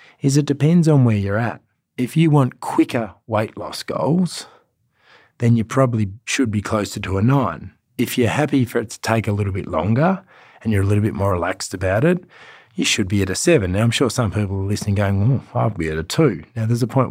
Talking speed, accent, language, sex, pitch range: 235 wpm, Australian, English, male, 100-135 Hz